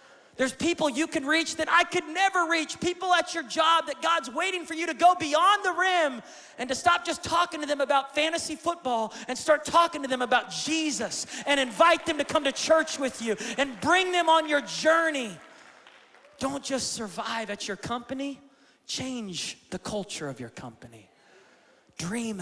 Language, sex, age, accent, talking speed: English, male, 30-49, American, 185 wpm